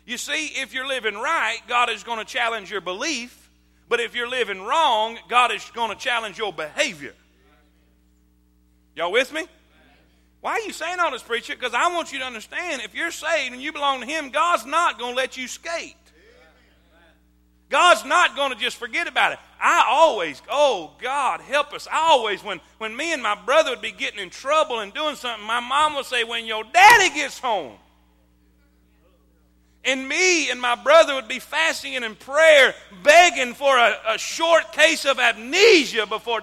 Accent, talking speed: American, 190 wpm